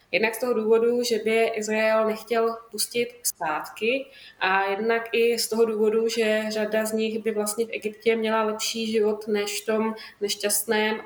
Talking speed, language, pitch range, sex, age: 170 wpm, Slovak, 205-230 Hz, female, 20-39